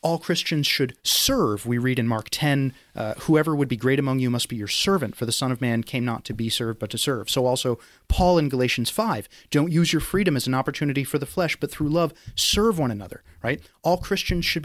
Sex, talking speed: male, 240 wpm